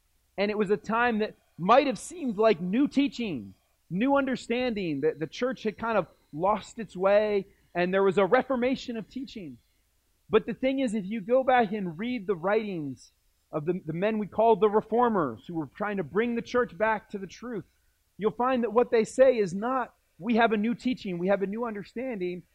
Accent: American